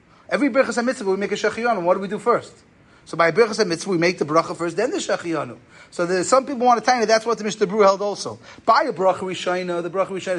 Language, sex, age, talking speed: English, male, 30-49, 255 wpm